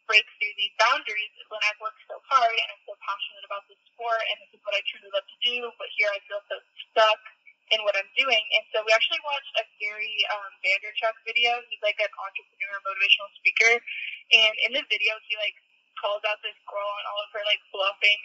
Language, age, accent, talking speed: English, 20-39, American, 225 wpm